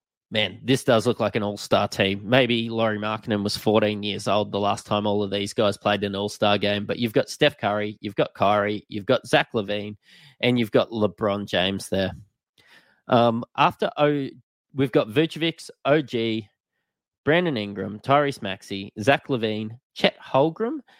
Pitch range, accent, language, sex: 105-130 Hz, Australian, English, male